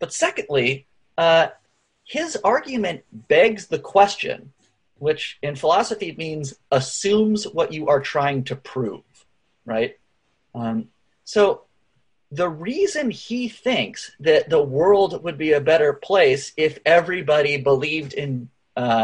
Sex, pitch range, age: male, 140-215 Hz, 30-49